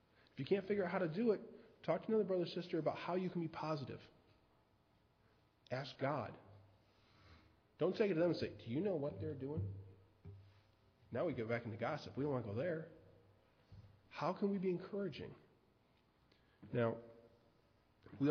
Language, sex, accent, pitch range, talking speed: English, male, American, 110-140 Hz, 180 wpm